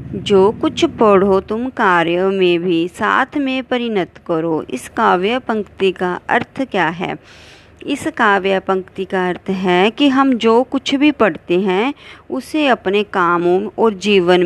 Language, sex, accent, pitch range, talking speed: Hindi, female, native, 190-255 Hz, 150 wpm